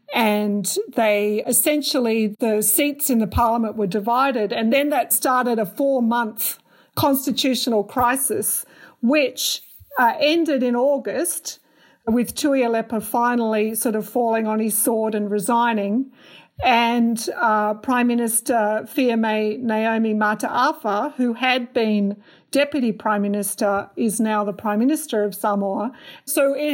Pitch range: 220-260 Hz